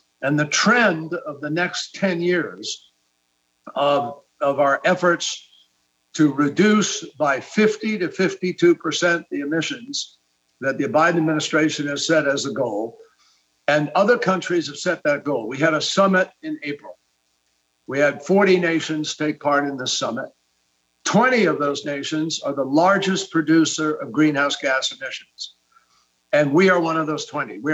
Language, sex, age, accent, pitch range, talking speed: English, male, 60-79, American, 140-180 Hz, 155 wpm